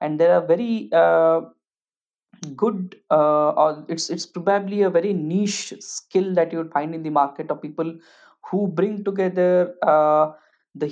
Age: 20-39